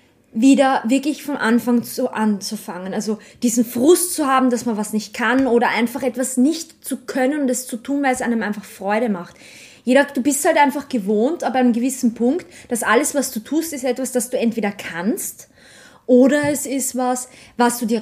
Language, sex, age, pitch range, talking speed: German, female, 20-39, 195-250 Hz, 200 wpm